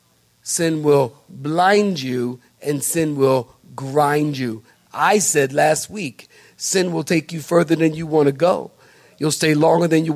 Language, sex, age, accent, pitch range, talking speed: English, male, 50-69, American, 145-185 Hz, 165 wpm